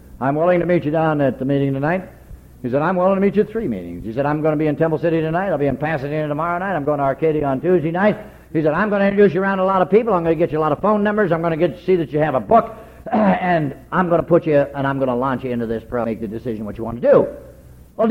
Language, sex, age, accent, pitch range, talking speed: English, male, 60-79, American, 140-190 Hz, 330 wpm